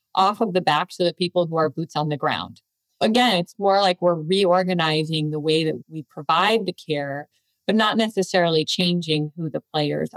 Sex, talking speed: female, 195 wpm